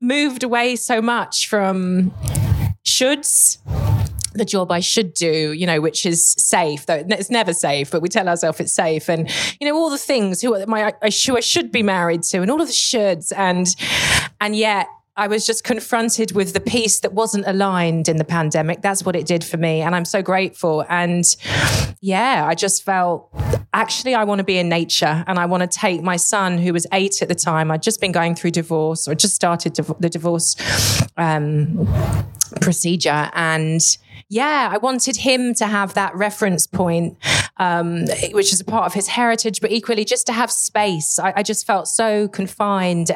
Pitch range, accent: 165-215 Hz, British